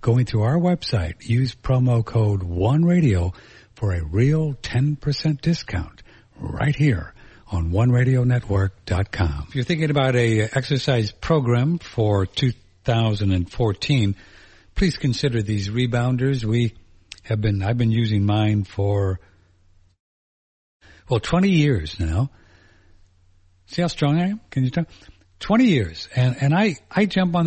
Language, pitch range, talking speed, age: English, 100-135 Hz, 135 wpm, 60-79